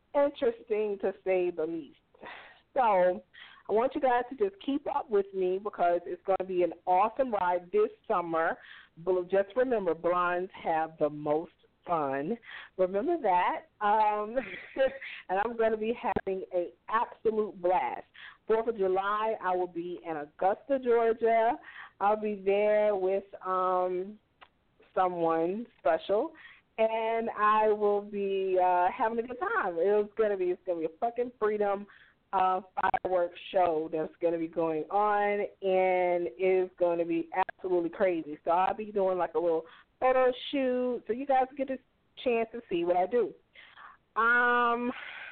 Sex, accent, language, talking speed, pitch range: female, American, English, 150 wpm, 180-250 Hz